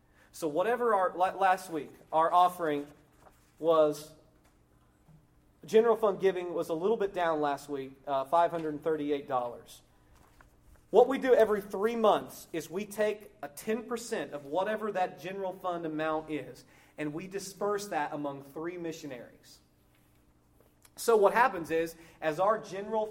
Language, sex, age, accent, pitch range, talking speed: English, male, 30-49, American, 150-200 Hz, 135 wpm